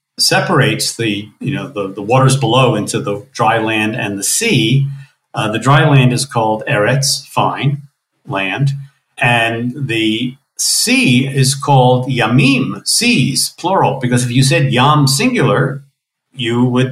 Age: 50-69